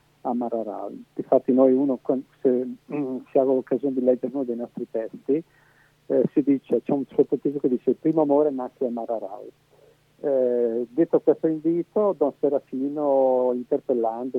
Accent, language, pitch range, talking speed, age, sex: native, Italian, 120-145 Hz, 140 wpm, 50-69, male